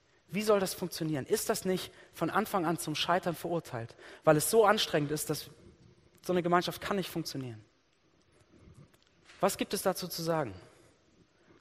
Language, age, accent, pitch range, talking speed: German, 30-49, German, 150-190 Hz, 165 wpm